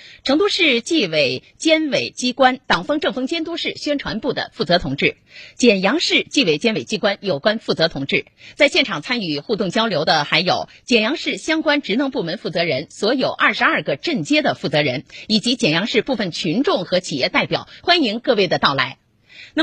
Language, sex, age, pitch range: Chinese, female, 30-49, 185-280 Hz